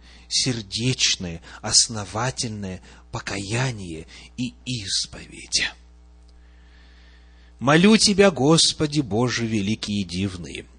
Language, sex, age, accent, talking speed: Russian, male, 30-49, native, 65 wpm